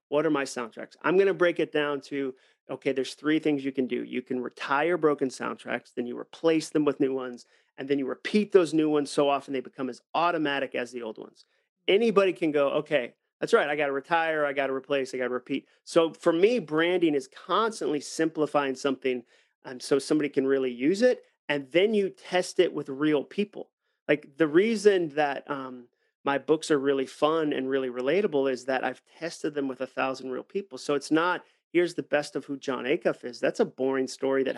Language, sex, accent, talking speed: English, male, American, 220 wpm